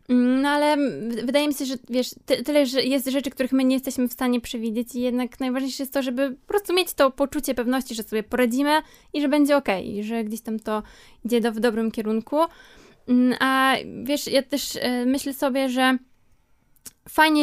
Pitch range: 230-270 Hz